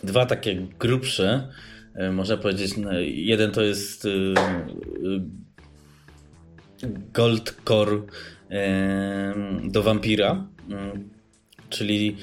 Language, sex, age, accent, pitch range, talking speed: Polish, male, 20-39, native, 95-110 Hz, 65 wpm